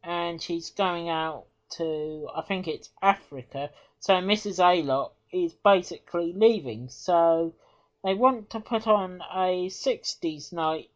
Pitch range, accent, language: 150-195 Hz, British, English